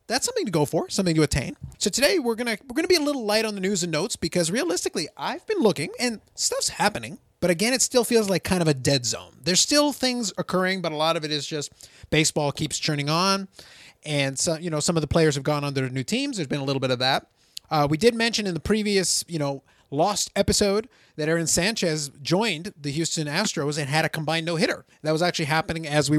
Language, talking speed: English, 245 wpm